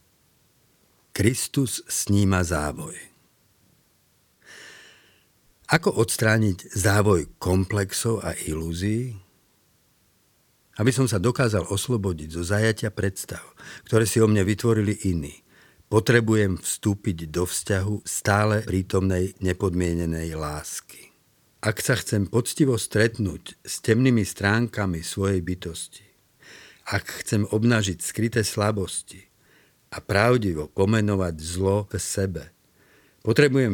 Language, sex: Slovak, male